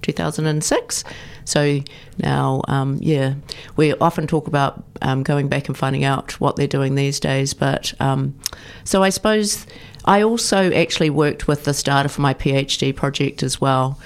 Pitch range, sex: 135-155 Hz, female